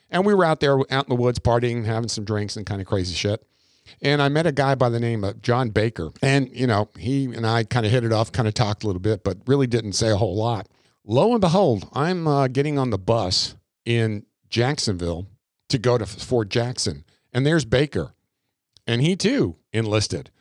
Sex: male